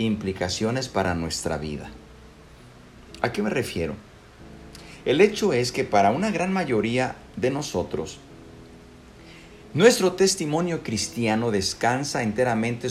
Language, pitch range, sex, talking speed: Spanish, 95-145 Hz, male, 105 wpm